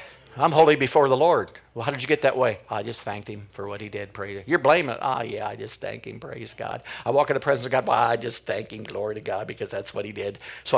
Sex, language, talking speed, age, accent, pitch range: male, English, 295 wpm, 50-69, American, 120-145 Hz